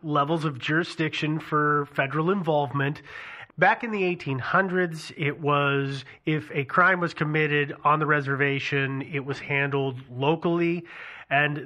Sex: male